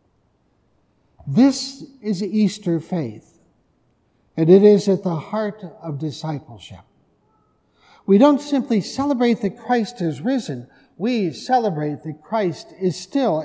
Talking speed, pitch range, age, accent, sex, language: 115 wpm, 155-215 Hz, 60-79, American, male, English